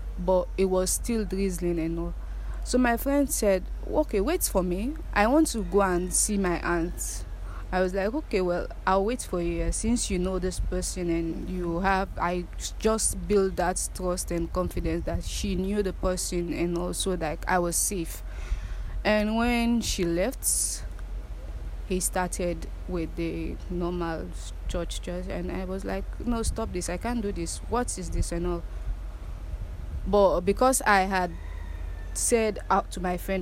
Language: English